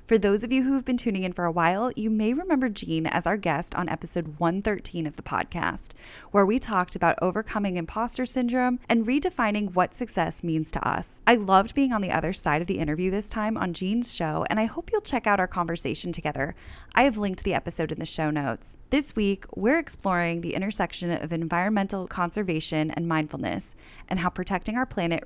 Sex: female